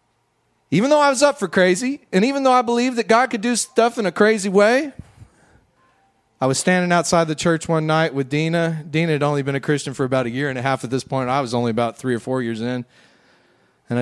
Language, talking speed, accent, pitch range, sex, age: English, 245 wpm, American, 130-205 Hz, male, 40-59